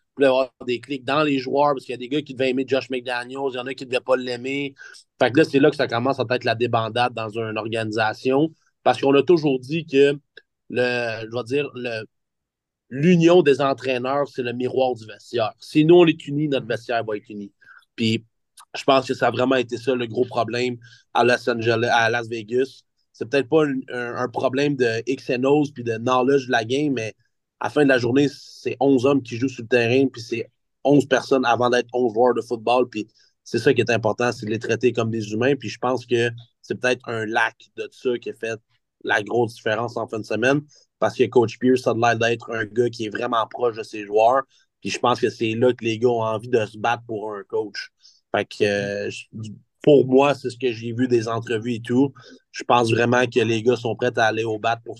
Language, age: French, 30-49